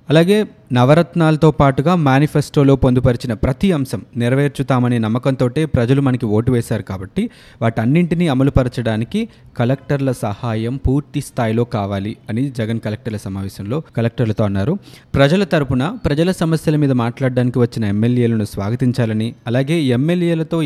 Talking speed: 110 wpm